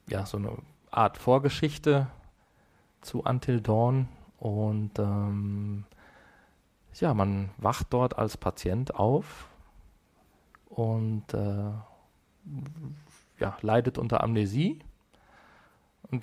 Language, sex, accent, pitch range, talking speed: German, male, German, 105-130 Hz, 90 wpm